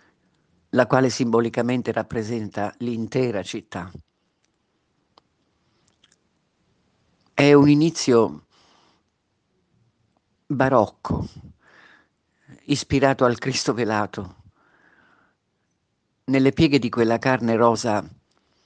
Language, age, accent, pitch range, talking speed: Italian, 50-69, native, 110-130 Hz, 65 wpm